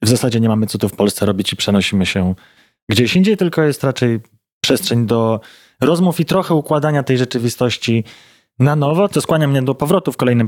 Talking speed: 195 wpm